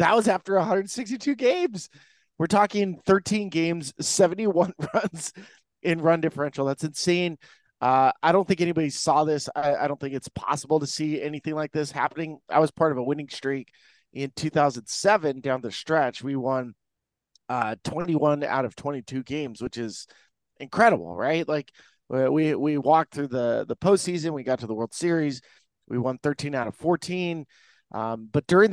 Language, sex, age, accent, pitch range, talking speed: English, male, 30-49, American, 135-175 Hz, 170 wpm